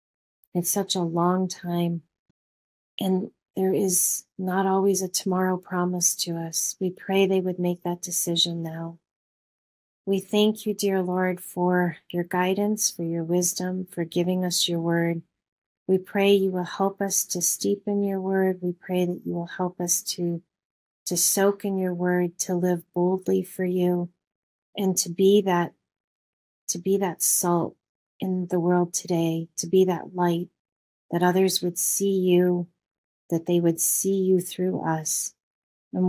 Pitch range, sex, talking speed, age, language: 170-190 Hz, female, 160 wpm, 40-59, English